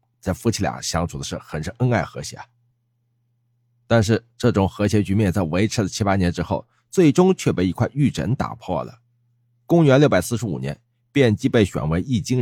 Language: Chinese